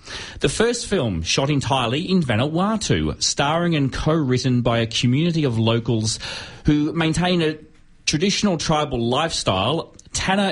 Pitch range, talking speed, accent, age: 110-145 Hz, 125 wpm, Australian, 30-49